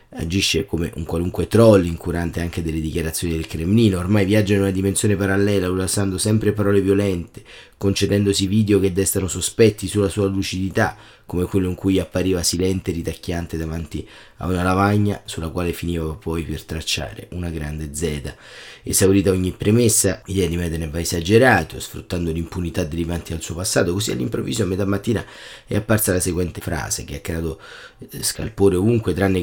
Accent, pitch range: native, 85-100 Hz